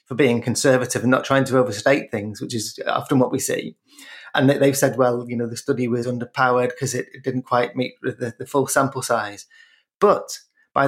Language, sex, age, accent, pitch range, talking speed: English, male, 30-49, British, 120-145 Hz, 205 wpm